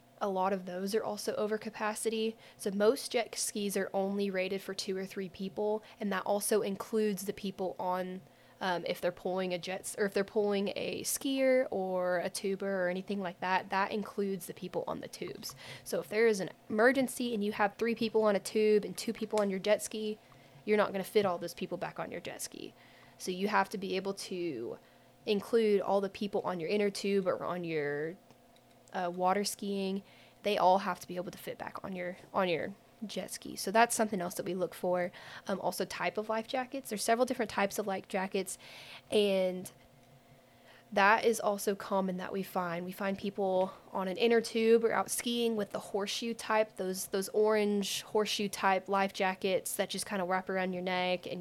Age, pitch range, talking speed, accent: 20-39, 180-210 Hz, 210 wpm, American